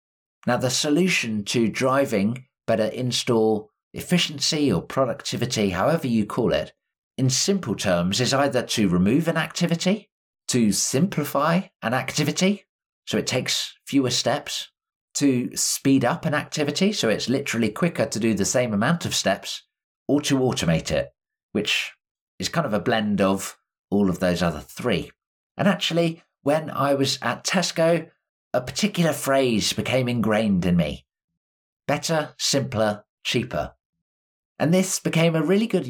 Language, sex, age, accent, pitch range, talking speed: English, male, 50-69, British, 110-155 Hz, 145 wpm